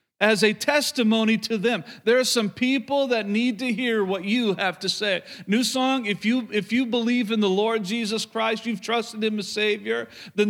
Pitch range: 185-220 Hz